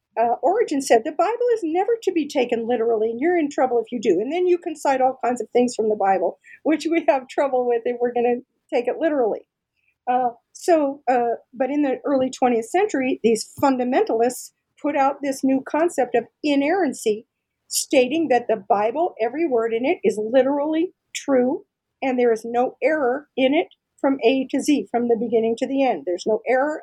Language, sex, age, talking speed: English, female, 50-69, 205 wpm